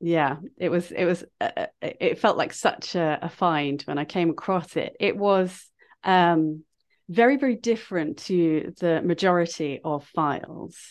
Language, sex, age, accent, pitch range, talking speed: English, female, 30-49, British, 155-190 Hz, 160 wpm